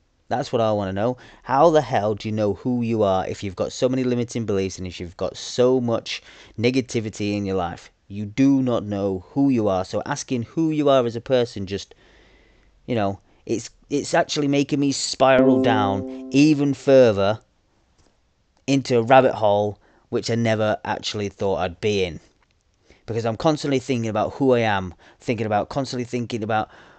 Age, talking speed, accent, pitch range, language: 30-49, 185 wpm, British, 105-130 Hz, English